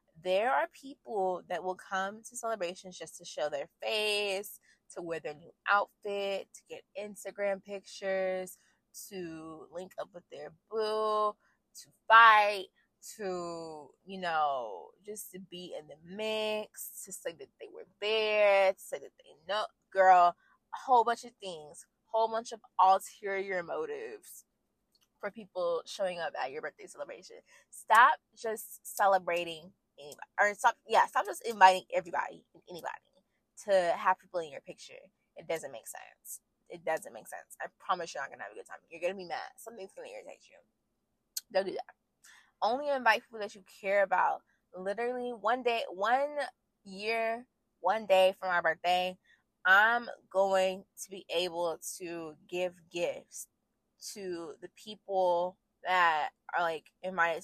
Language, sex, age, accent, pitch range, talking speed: English, female, 20-39, American, 180-225 Hz, 155 wpm